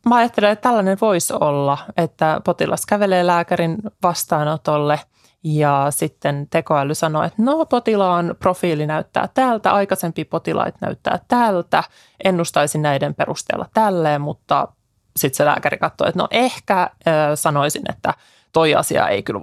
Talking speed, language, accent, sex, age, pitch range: 135 wpm, Finnish, native, male, 20-39, 155-195 Hz